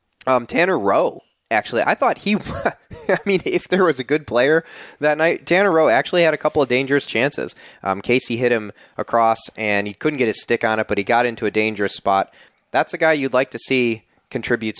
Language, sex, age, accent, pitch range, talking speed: English, male, 20-39, American, 100-125 Hz, 220 wpm